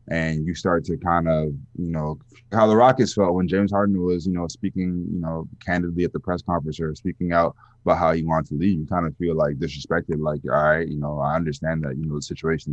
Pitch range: 75-90 Hz